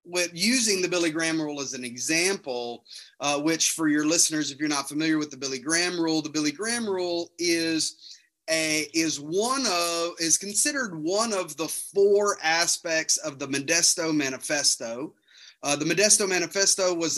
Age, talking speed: 30-49, 170 wpm